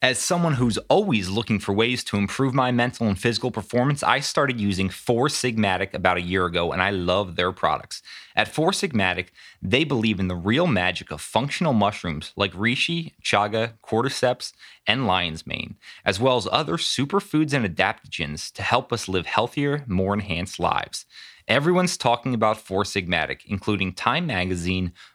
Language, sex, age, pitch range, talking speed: English, male, 30-49, 95-125 Hz, 165 wpm